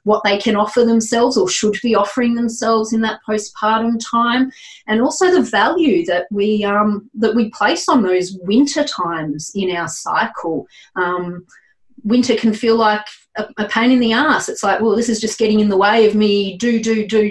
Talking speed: 200 wpm